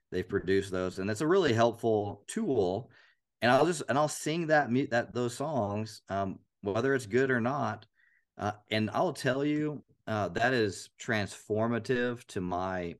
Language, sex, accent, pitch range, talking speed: English, male, American, 95-115 Hz, 170 wpm